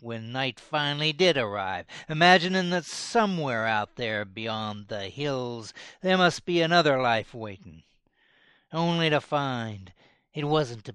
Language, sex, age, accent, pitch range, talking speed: English, male, 60-79, American, 120-180 Hz, 135 wpm